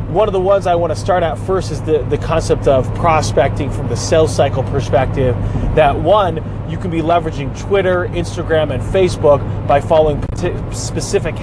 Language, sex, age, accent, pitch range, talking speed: English, male, 30-49, American, 120-160 Hz, 180 wpm